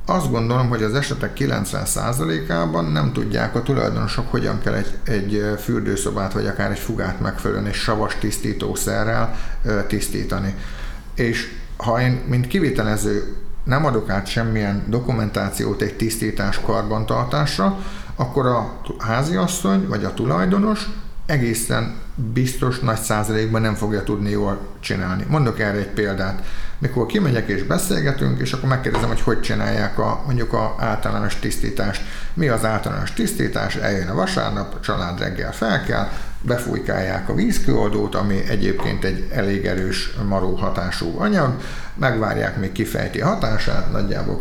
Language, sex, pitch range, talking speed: Hungarian, male, 100-120 Hz, 135 wpm